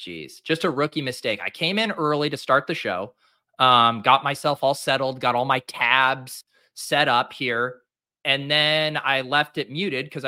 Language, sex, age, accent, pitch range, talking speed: English, male, 30-49, American, 120-155 Hz, 185 wpm